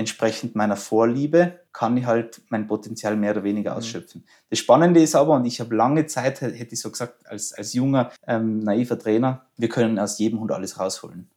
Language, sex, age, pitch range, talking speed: German, male, 20-39, 105-125 Hz, 200 wpm